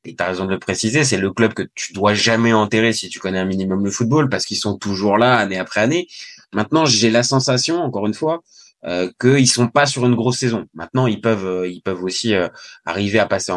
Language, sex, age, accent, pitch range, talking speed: French, male, 20-39, French, 110-150 Hz, 250 wpm